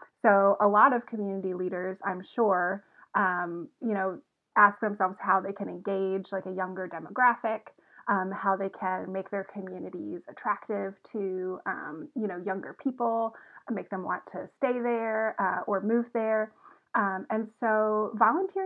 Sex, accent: female, American